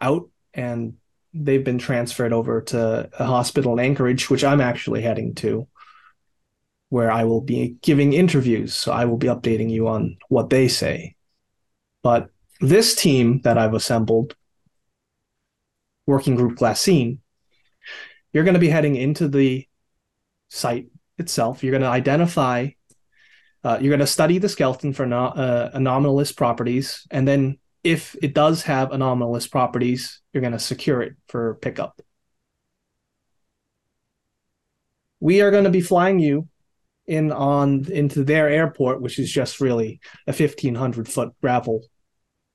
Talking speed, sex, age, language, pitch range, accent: 140 wpm, male, 30-49, English, 120-145 Hz, American